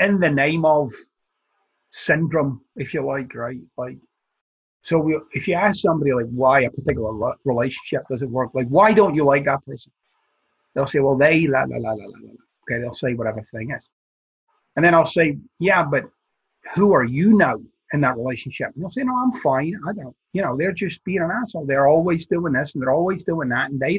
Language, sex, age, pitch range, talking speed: English, male, 30-49, 135-190 Hz, 215 wpm